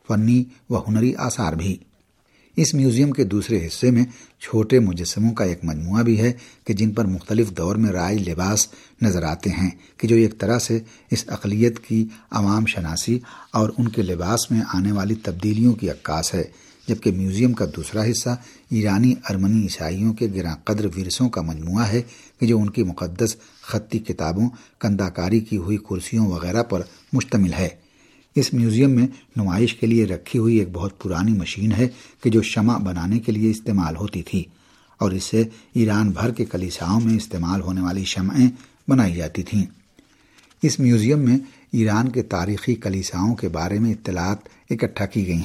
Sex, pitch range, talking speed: male, 95-115 Hz, 175 wpm